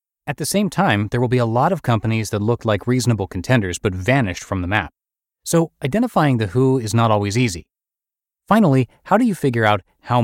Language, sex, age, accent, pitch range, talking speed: English, male, 30-49, American, 100-140 Hz, 210 wpm